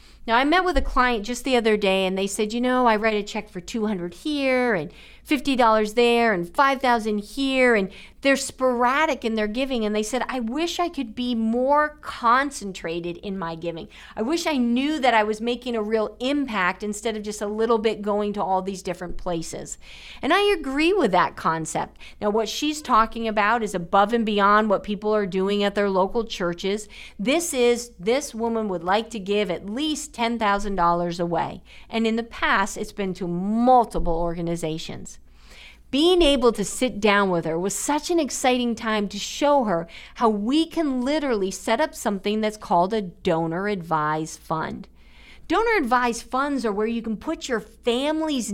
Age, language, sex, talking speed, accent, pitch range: 50-69, English, female, 190 wpm, American, 200-265 Hz